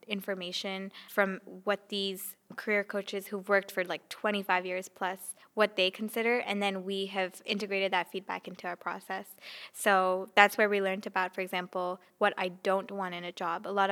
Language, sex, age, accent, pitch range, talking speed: English, female, 10-29, American, 190-215 Hz, 185 wpm